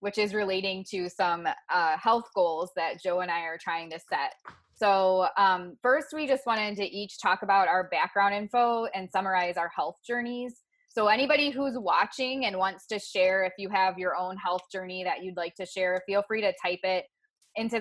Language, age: English, 20-39